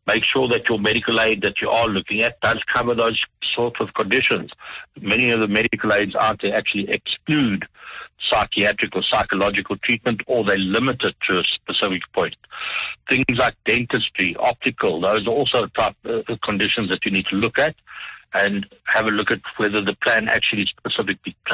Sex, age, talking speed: male, 60-79, 180 wpm